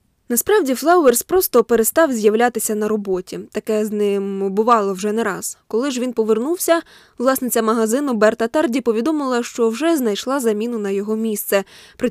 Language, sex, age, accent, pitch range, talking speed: Ukrainian, female, 20-39, native, 215-265 Hz, 155 wpm